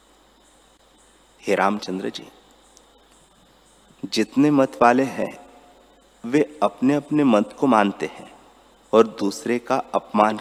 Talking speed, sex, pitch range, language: 100 wpm, male, 110-130 Hz, Hindi